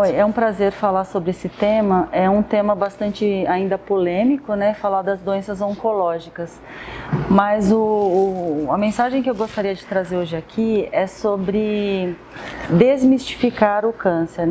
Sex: female